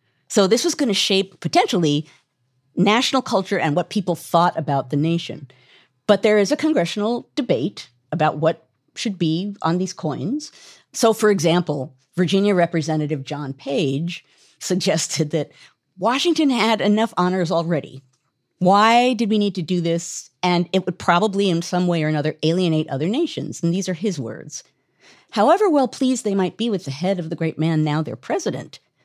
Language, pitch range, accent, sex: English, 155-215 Hz, American, female